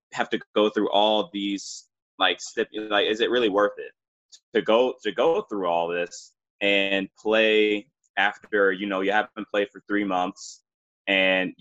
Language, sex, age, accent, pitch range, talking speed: English, male, 20-39, American, 95-110 Hz, 165 wpm